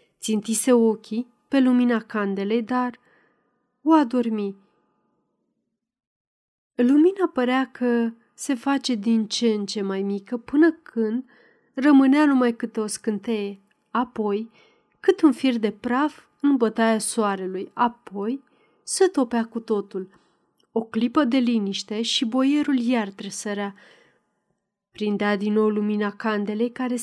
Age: 30-49